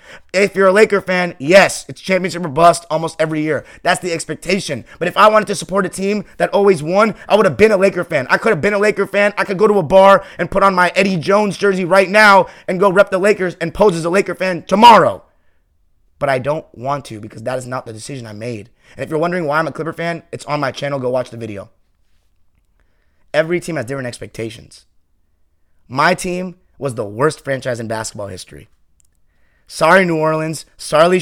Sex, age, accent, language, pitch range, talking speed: male, 30-49, American, English, 110-180 Hz, 220 wpm